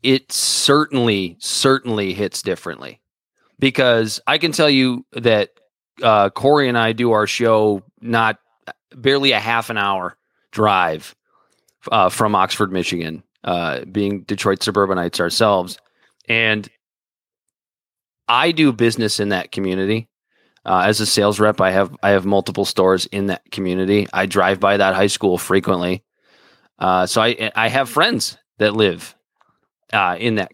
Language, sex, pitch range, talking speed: English, male, 100-125 Hz, 145 wpm